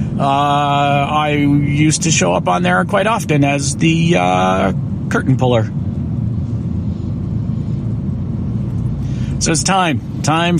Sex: male